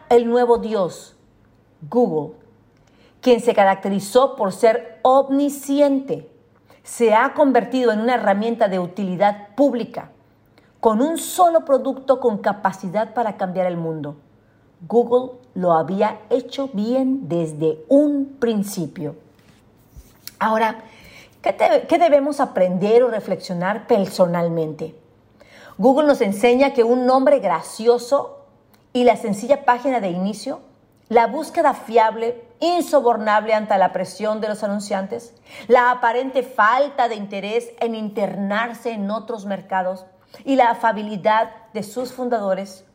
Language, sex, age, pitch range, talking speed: Spanish, female, 50-69, 190-250 Hz, 120 wpm